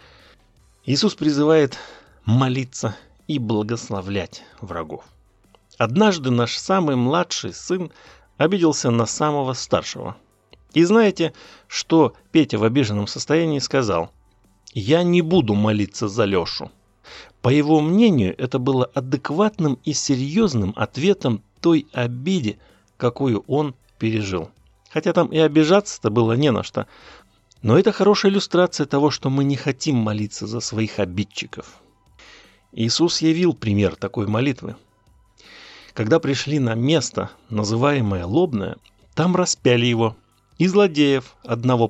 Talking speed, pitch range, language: 115 wpm, 105-155 Hz, Russian